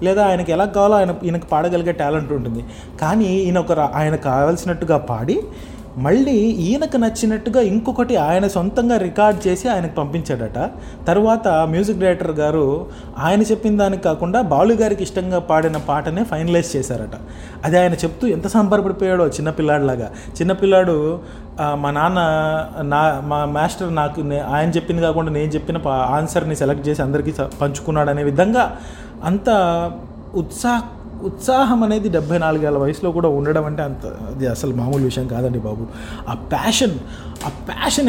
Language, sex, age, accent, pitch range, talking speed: English, male, 30-49, Indian, 145-185 Hz, 115 wpm